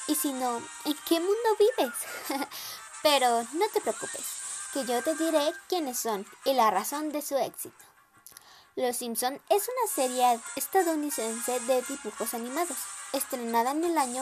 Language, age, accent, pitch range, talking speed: Spanish, 20-39, Mexican, 230-320 Hz, 150 wpm